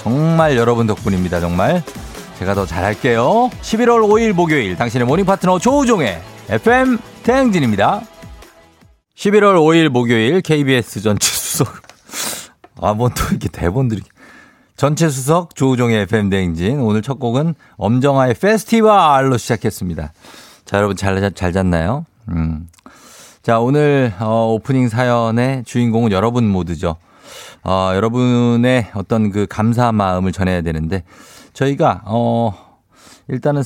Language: Korean